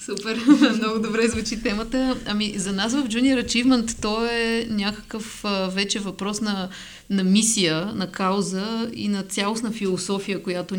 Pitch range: 185-215 Hz